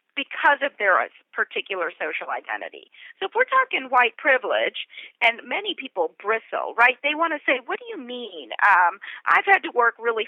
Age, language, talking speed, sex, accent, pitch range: 40-59, English, 180 wpm, female, American, 230-370 Hz